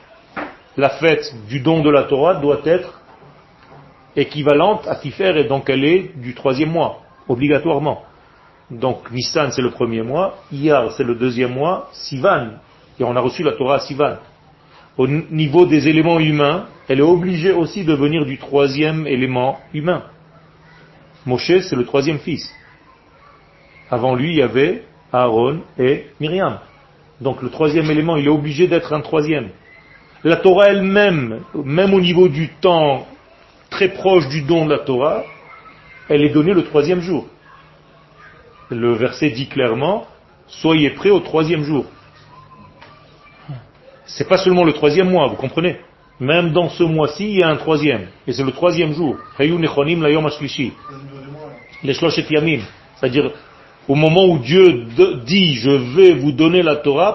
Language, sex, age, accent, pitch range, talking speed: French, male, 40-59, French, 140-170 Hz, 150 wpm